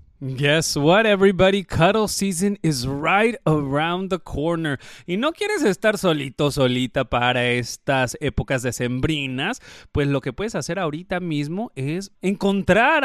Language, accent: English, Mexican